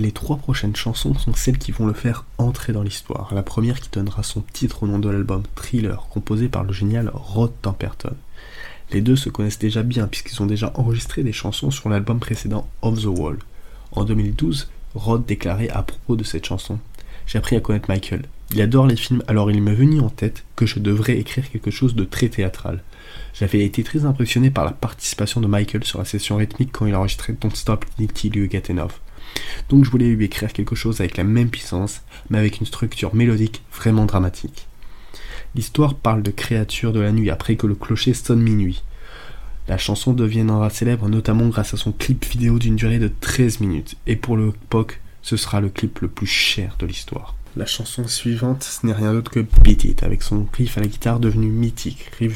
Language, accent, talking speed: French, French, 205 wpm